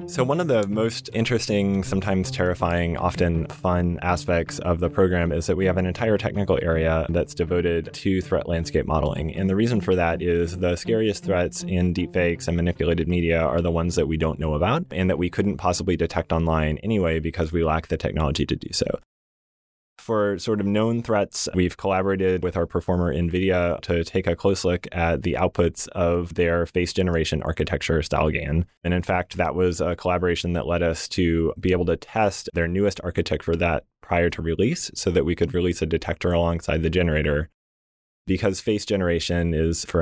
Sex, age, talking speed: male, 20-39, 195 wpm